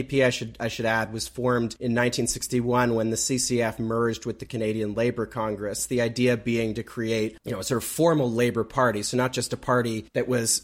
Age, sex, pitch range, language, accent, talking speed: 30-49, male, 110-130 Hz, English, American, 215 wpm